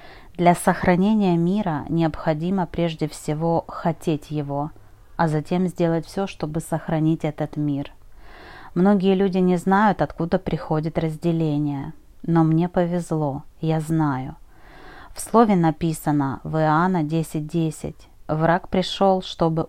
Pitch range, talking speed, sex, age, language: 155-185 Hz, 115 wpm, female, 30-49, Russian